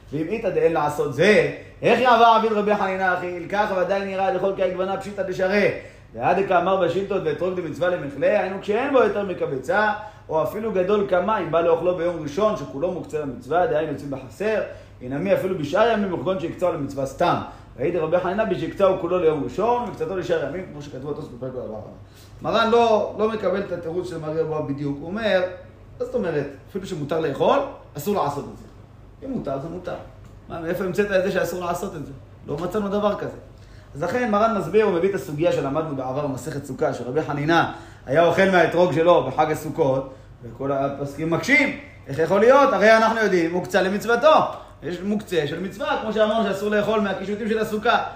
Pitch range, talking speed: 150-210 Hz, 165 wpm